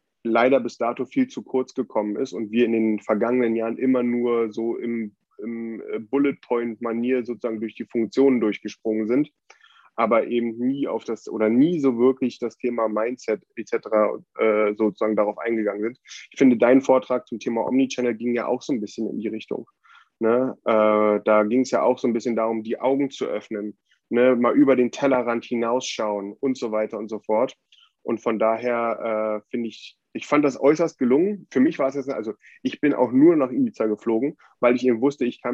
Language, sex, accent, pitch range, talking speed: German, male, German, 110-130 Hz, 195 wpm